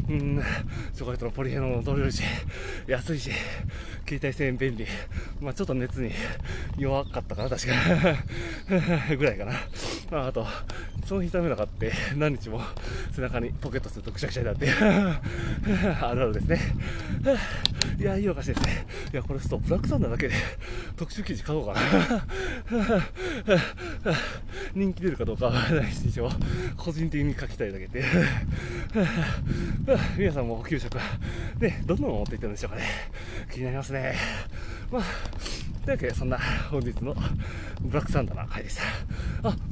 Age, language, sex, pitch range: 20-39, Japanese, male, 105-145 Hz